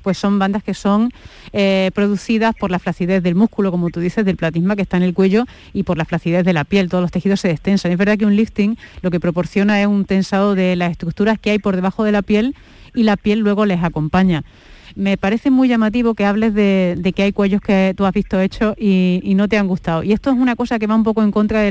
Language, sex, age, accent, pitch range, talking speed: Spanish, female, 30-49, Spanish, 190-215 Hz, 260 wpm